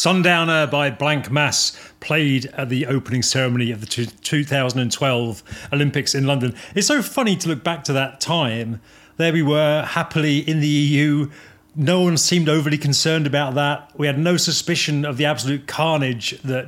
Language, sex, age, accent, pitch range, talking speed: English, male, 40-59, British, 130-165 Hz, 170 wpm